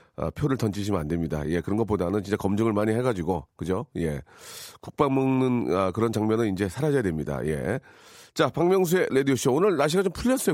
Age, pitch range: 40-59, 100-145 Hz